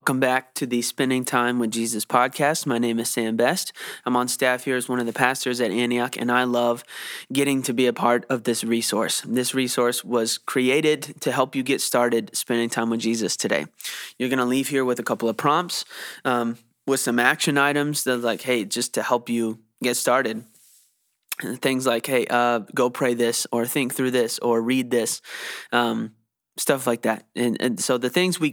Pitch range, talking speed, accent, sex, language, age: 120-135 Hz, 200 wpm, American, male, English, 20-39